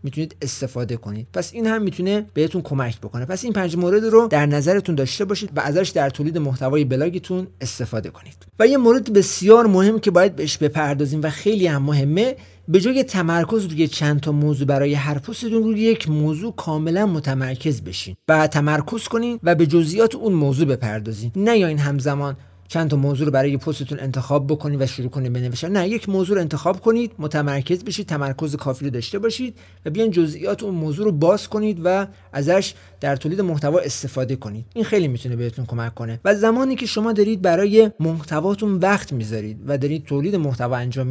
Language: Persian